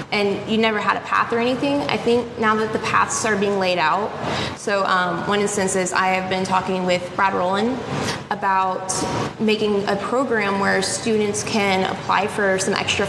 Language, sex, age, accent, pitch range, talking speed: English, female, 20-39, American, 180-215 Hz, 190 wpm